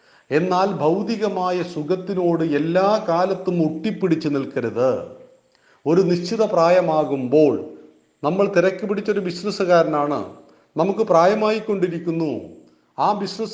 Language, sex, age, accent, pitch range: Hindi, male, 40-59, native, 140-180 Hz